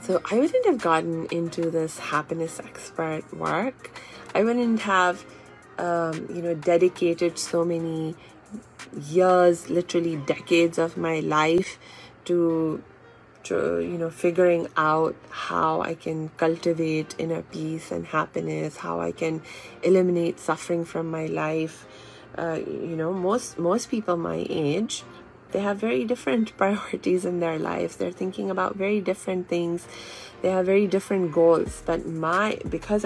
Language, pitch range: English, 160-180 Hz